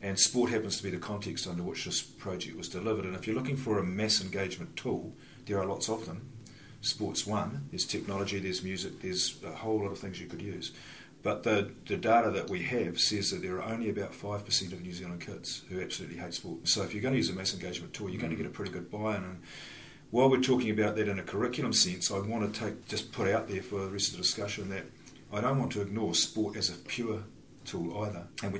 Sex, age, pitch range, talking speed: male, 40-59, 90-110 Hz, 255 wpm